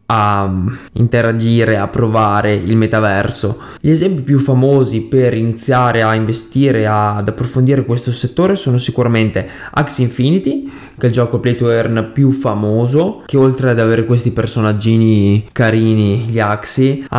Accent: native